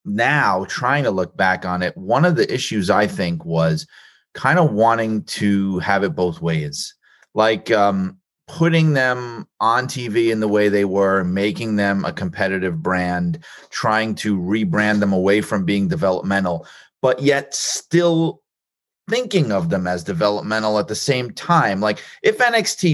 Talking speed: 160 wpm